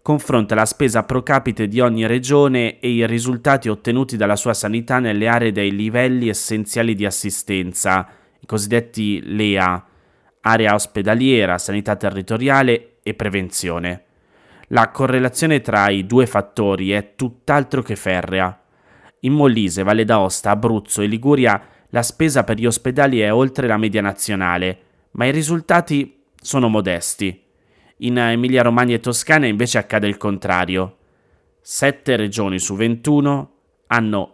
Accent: native